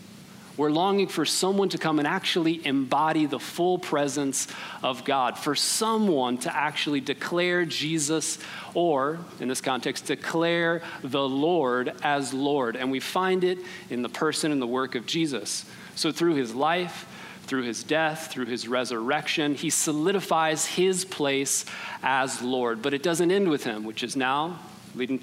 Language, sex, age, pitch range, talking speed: English, male, 40-59, 140-180 Hz, 160 wpm